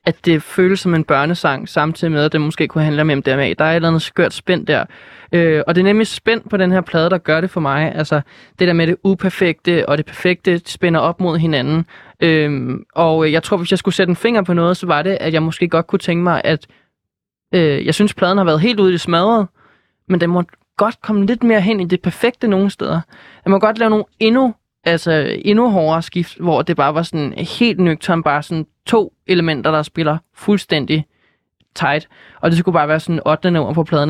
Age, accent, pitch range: 20-39, native, 155-185 Hz